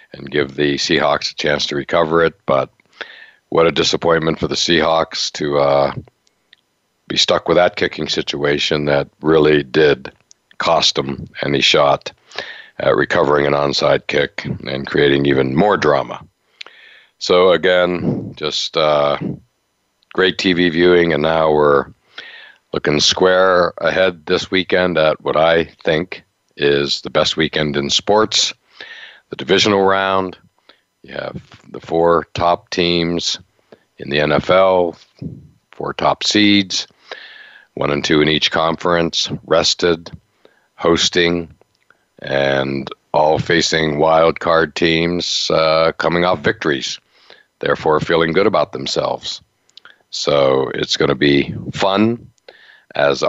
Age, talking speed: 60-79, 125 wpm